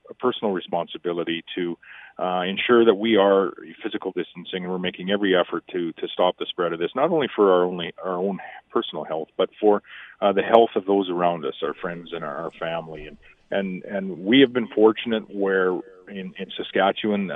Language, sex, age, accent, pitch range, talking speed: English, male, 40-59, American, 90-110 Hz, 195 wpm